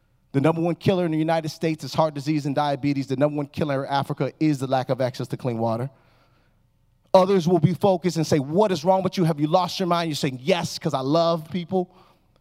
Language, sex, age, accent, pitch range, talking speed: English, male, 30-49, American, 135-185 Hz, 240 wpm